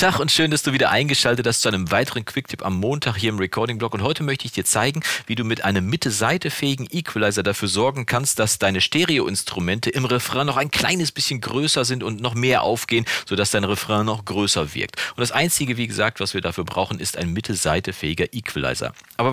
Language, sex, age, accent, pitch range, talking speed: German, male, 40-59, German, 105-135 Hz, 210 wpm